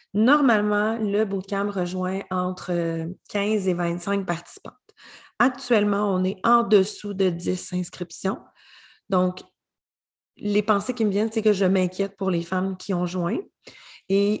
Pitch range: 185-225 Hz